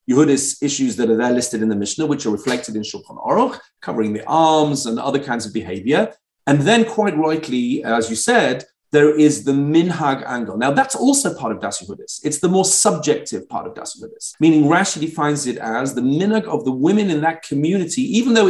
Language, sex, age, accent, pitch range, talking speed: English, male, 30-49, British, 130-165 Hz, 210 wpm